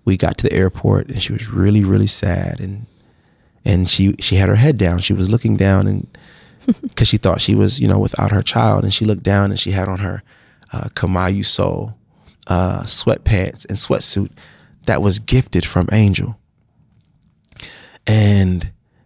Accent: American